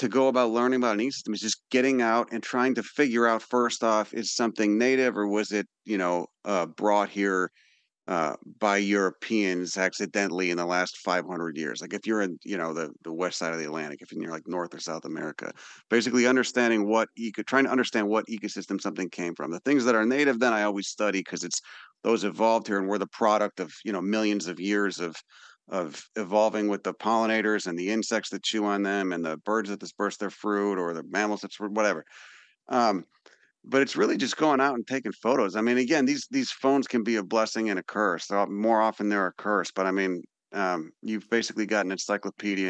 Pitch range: 95-115 Hz